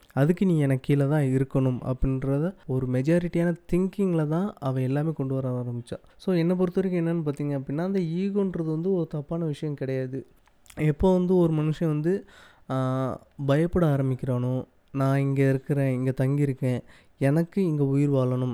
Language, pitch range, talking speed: Tamil, 130-165 Hz, 150 wpm